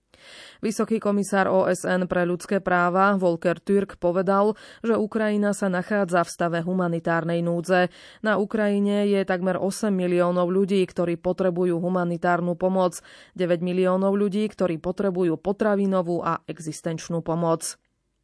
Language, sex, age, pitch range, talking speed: Slovak, female, 20-39, 175-200 Hz, 120 wpm